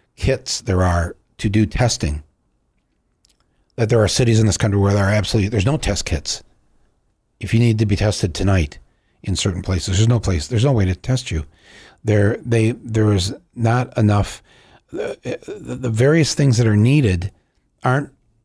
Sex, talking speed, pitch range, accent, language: male, 180 wpm, 90-115 Hz, American, English